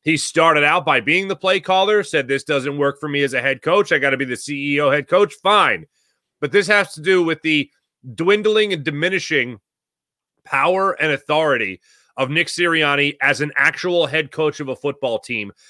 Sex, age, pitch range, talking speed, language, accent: male, 30-49, 150-215 Hz, 200 wpm, English, American